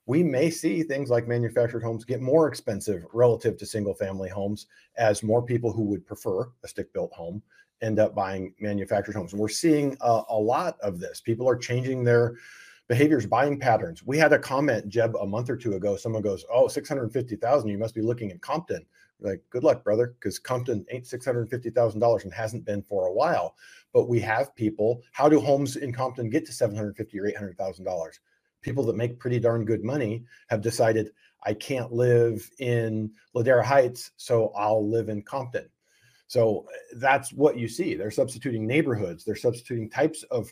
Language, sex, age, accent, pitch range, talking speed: English, male, 40-59, American, 110-135 Hz, 185 wpm